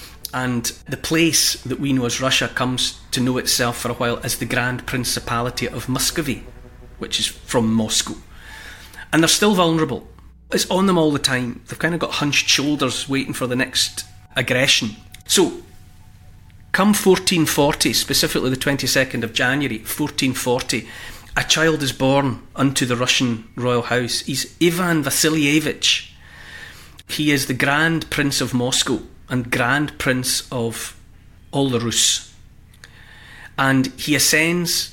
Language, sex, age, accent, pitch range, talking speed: English, male, 40-59, British, 120-145 Hz, 145 wpm